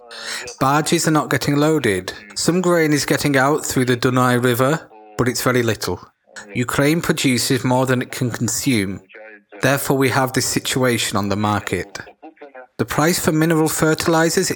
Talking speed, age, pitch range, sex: 155 wpm, 30-49, 120-150 Hz, male